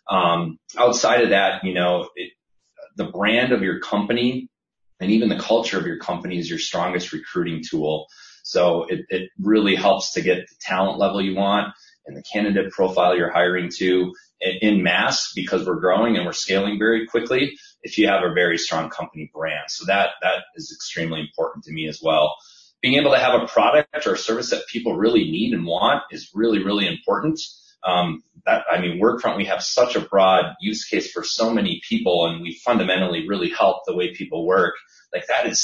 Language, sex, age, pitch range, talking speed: English, male, 30-49, 90-125 Hz, 195 wpm